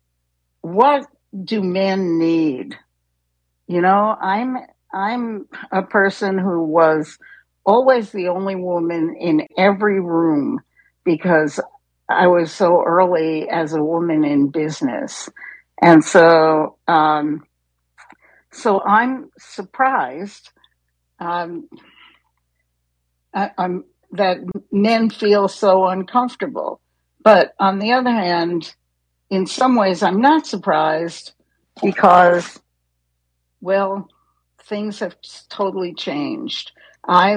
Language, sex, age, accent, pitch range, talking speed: English, female, 60-79, American, 155-205 Hz, 100 wpm